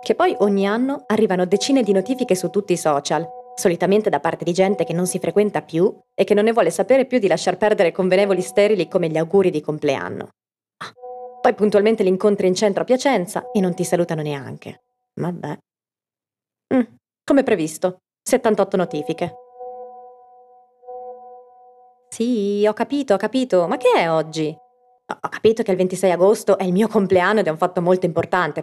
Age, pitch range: 30-49, 175-250 Hz